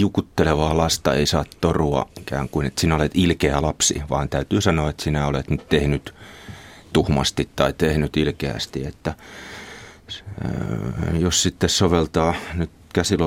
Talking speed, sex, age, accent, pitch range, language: 130 wpm, male, 30-49, native, 75-95 Hz, Finnish